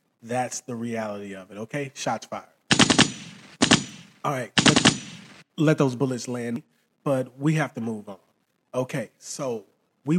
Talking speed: 135 wpm